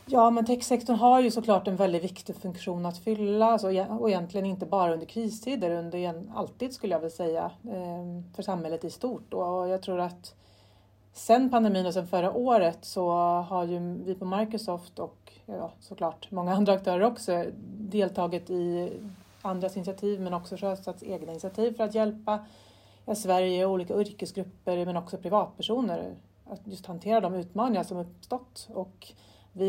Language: Swedish